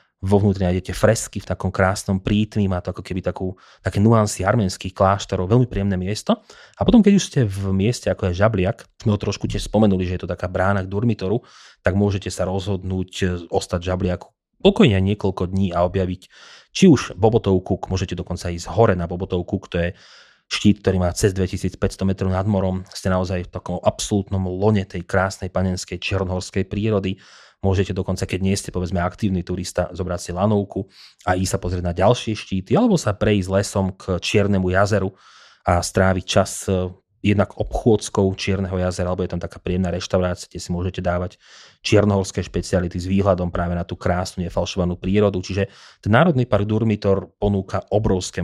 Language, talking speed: Slovak, 175 wpm